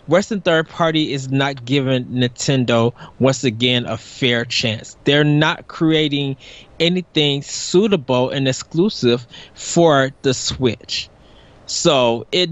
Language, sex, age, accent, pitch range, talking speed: English, male, 20-39, American, 130-170 Hz, 115 wpm